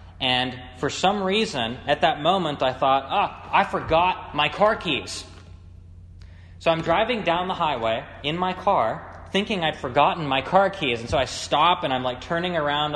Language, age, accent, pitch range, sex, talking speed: English, 20-39, American, 95-150 Hz, male, 180 wpm